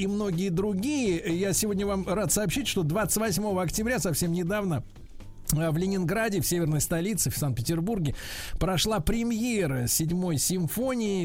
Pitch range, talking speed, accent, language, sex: 155-195 Hz, 130 wpm, native, Russian, male